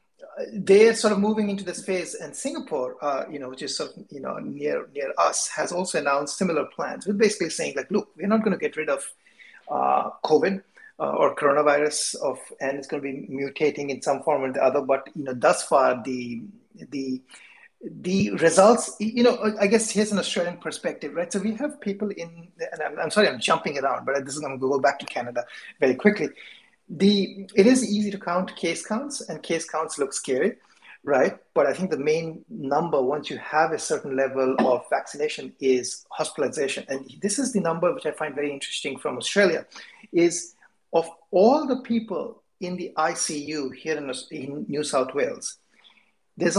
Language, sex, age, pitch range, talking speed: English, male, 30-49, 140-205 Hz, 200 wpm